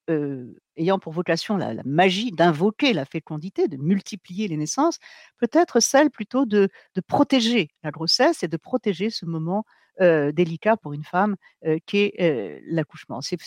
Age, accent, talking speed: 50-69, French, 170 wpm